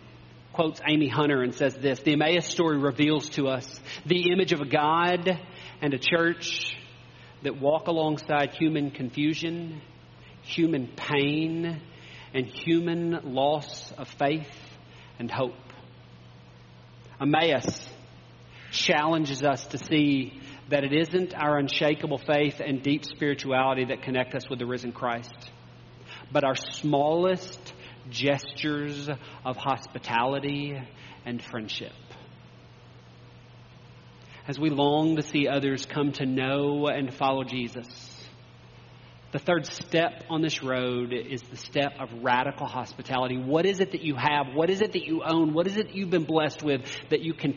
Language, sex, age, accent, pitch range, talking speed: English, male, 40-59, American, 125-155 Hz, 140 wpm